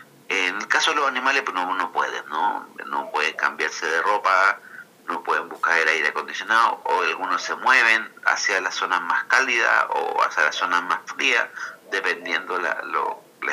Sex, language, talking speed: male, Spanish, 180 wpm